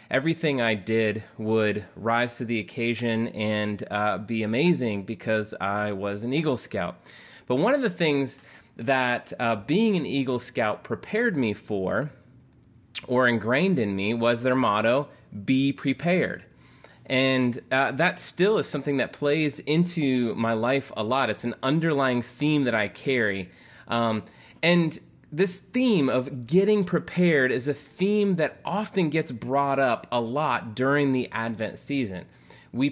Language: English